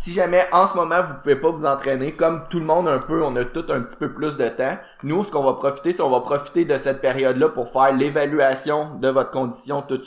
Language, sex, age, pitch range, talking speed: French, male, 20-39, 125-150 Hz, 270 wpm